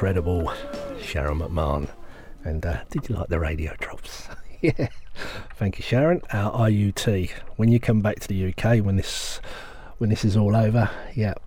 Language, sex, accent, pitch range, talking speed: English, male, British, 95-125 Hz, 165 wpm